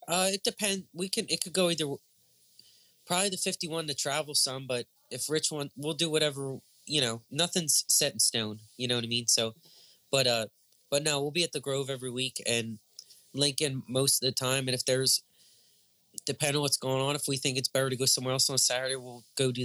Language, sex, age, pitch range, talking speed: English, male, 20-39, 115-140 Hz, 225 wpm